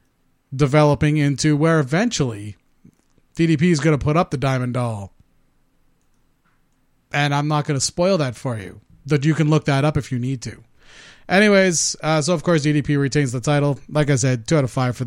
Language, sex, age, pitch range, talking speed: English, male, 30-49, 140-185 Hz, 195 wpm